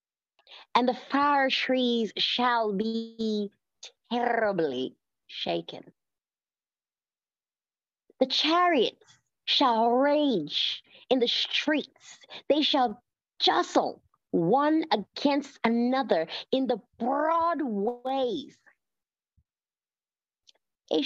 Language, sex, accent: English, female, American